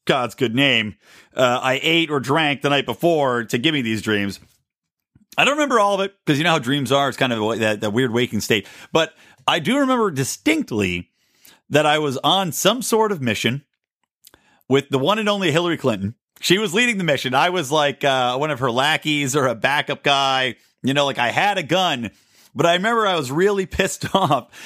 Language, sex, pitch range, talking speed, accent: English, male, 125-170 Hz, 215 wpm, American